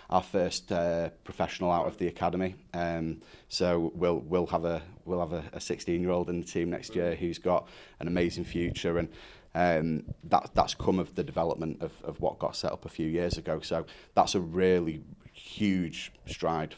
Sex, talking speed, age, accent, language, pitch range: male, 195 wpm, 30-49, British, English, 80-85 Hz